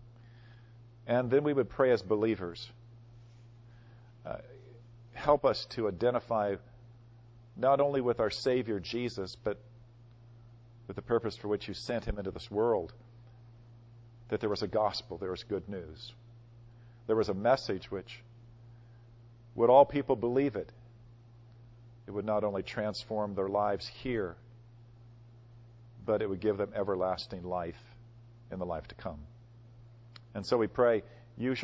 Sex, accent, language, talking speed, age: male, American, English, 140 wpm, 50-69